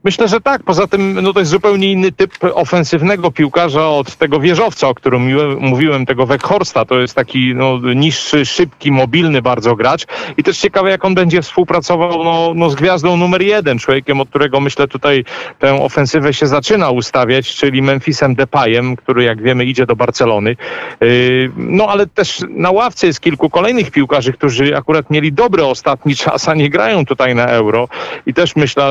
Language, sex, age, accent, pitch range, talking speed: Polish, male, 40-59, native, 130-170 Hz, 180 wpm